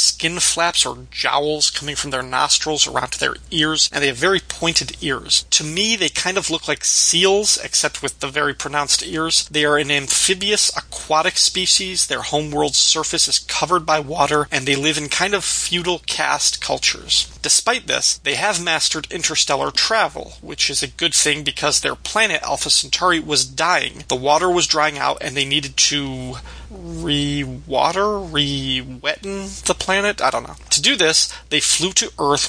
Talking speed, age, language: 175 wpm, 30-49, English